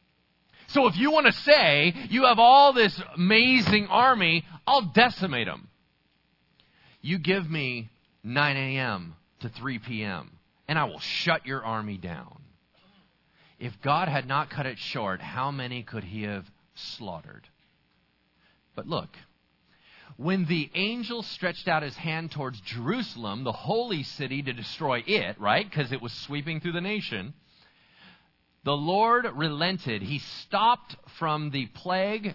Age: 40-59